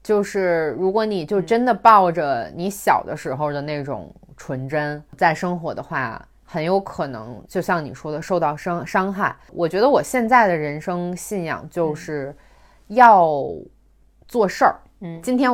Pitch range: 155-230 Hz